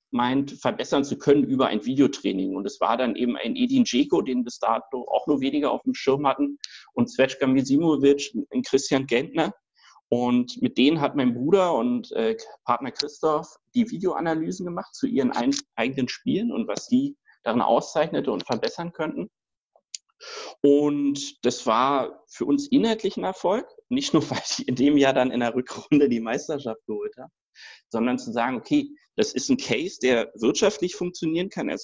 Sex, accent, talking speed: male, German, 175 wpm